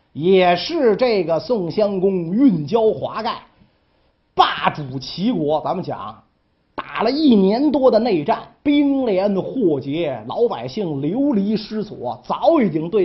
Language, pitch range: Chinese, 165-245 Hz